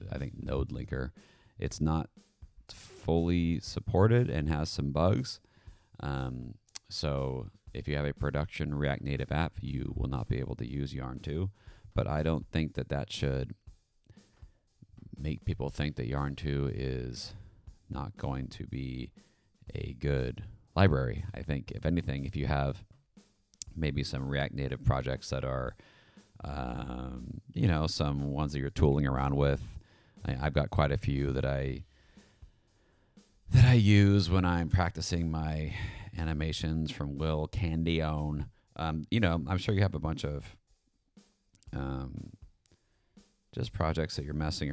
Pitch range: 70-90 Hz